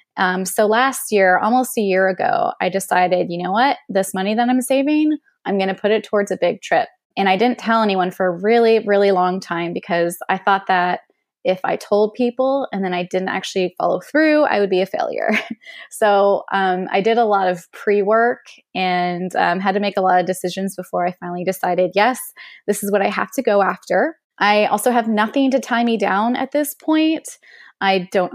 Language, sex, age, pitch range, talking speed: English, female, 20-39, 185-245 Hz, 215 wpm